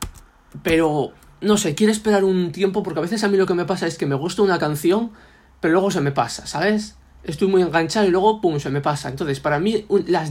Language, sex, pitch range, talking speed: Spanish, male, 145-185 Hz, 240 wpm